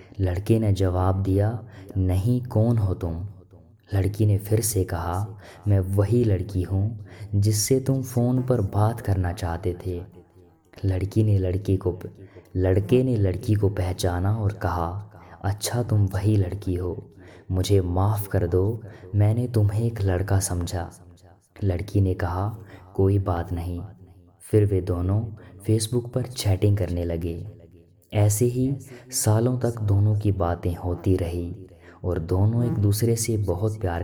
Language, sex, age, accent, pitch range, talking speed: Hindi, female, 20-39, native, 90-110 Hz, 140 wpm